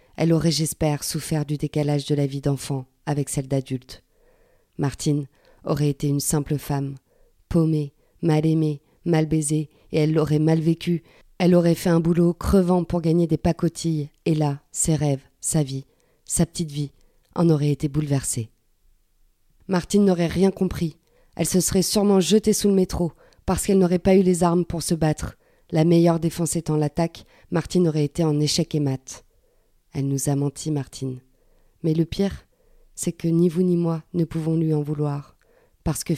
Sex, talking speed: female, 175 wpm